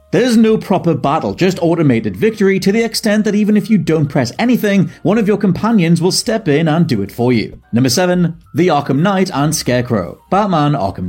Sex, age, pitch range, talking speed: male, 30-49, 145-200 Hz, 205 wpm